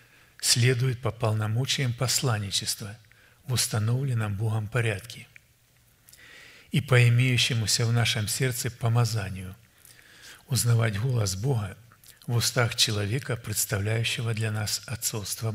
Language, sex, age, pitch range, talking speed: Russian, male, 50-69, 110-130 Hz, 95 wpm